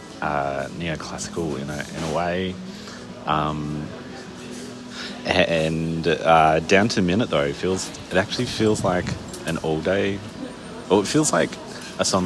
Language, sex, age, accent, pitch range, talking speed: English, male, 30-49, Australian, 75-95 Hz, 150 wpm